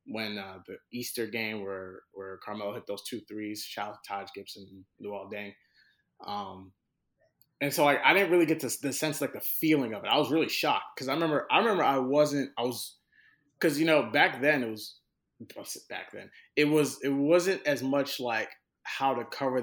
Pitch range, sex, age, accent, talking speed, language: 110-145 Hz, male, 20-39, American, 200 wpm, English